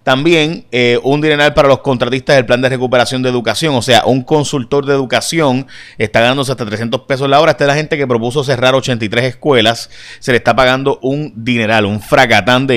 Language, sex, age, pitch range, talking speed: Spanish, male, 30-49, 115-140 Hz, 205 wpm